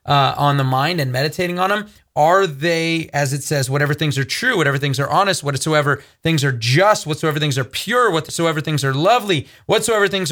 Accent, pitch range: American, 145-185 Hz